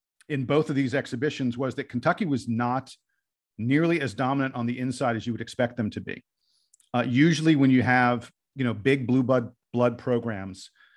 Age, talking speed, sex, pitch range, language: 50-69, 190 wpm, male, 125-155 Hz, English